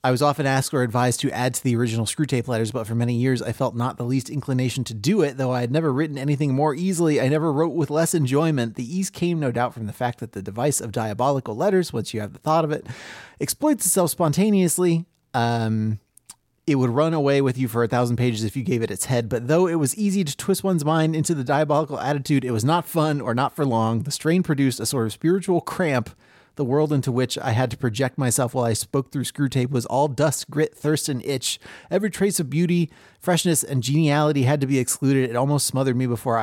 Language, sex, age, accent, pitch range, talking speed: English, male, 30-49, American, 120-155 Hz, 245 wpm